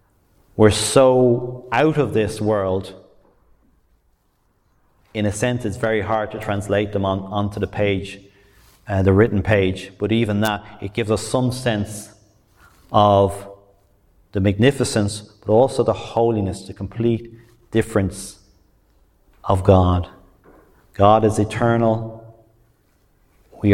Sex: male